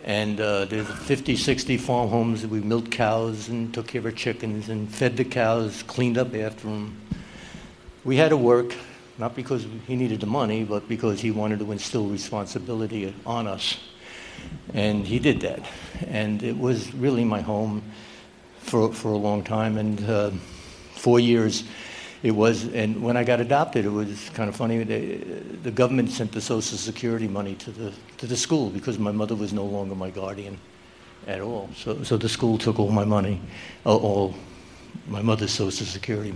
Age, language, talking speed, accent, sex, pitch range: 60-79, English, 180 wpm, American, male, 105-120 Hz